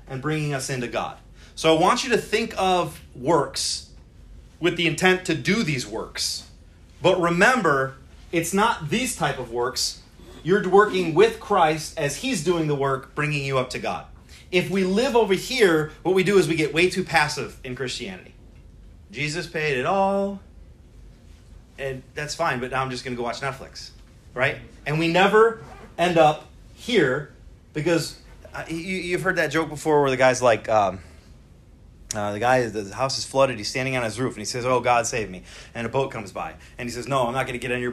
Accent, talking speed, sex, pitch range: American, 200 wpm, male, 120-175 Hz